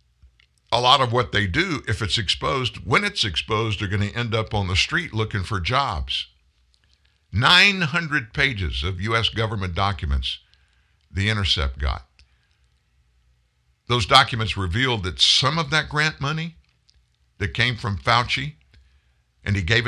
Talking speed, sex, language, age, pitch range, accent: 145 wpm, male, English, 60-79, 80-120 Hz, American